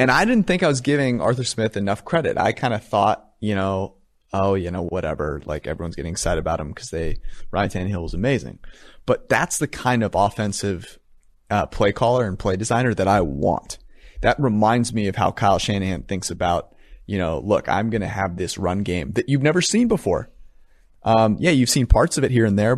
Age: 30-49